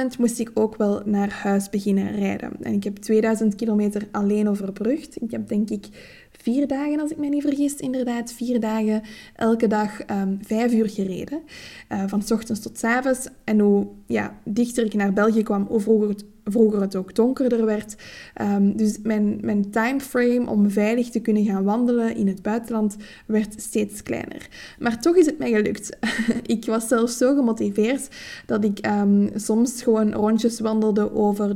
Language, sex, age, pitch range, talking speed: Dutch, female, 20-39, 205-235 Hz, 175 wpm